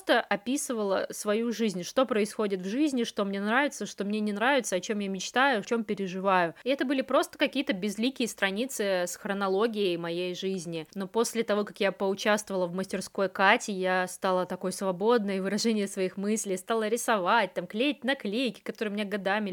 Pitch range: 190-230 Hz